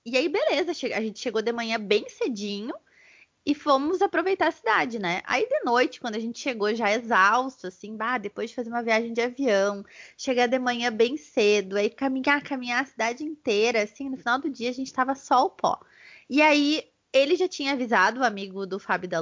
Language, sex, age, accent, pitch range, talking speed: Portuguese, female, 20-39, Brazilian, 210-270 Hz, 205 wpm